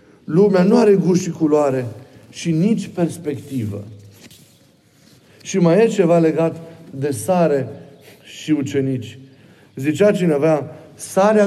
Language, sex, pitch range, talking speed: Romanian, male, 120-175 Hz, 110 wpm